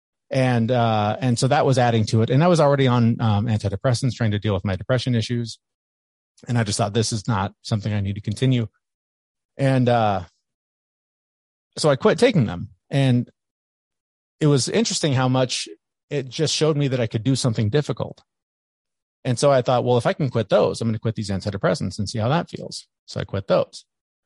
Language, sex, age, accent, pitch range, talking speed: English, male, 30-49, American, 110-140 Hz, 205 wpm